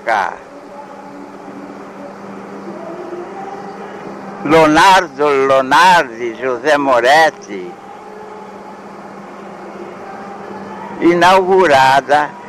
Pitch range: 140-180 Hz